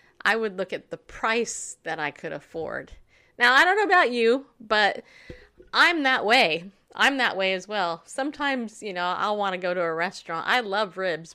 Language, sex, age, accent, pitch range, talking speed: English, female, 30-49, American, 175-255 Hz, 200 wpm